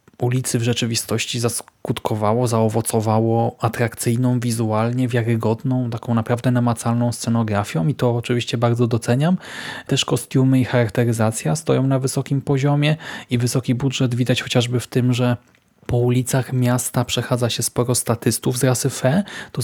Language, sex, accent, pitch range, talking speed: Polish, male, native, 120-135 Hz, 135 wpm